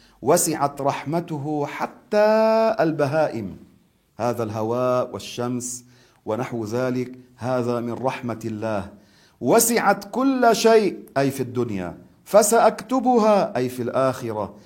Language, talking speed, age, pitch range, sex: Arabic, 95 wpm, 40-59, 125-175 Hz, male